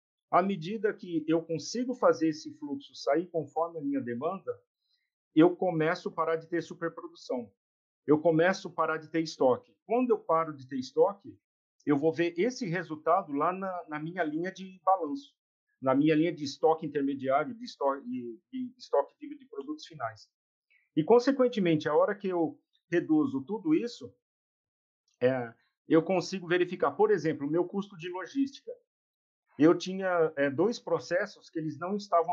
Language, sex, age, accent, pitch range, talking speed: Portuguese, male, 50-69, Brazilian, 155-240 Hz, 160 wpm